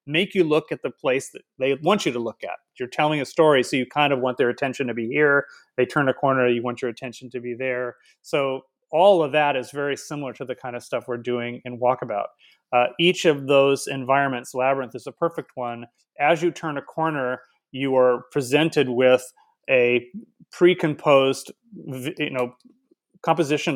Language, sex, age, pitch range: English, male, 30-49, 125-150 Hz